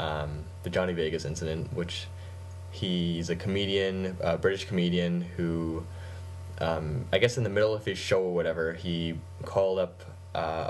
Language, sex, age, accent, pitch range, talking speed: English, male, 10-29, American, 80-90 Hz, 155 wpm